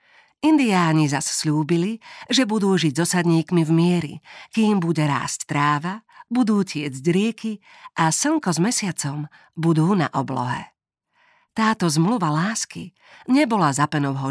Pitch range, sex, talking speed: 150-200 Hz, female, 125 wpm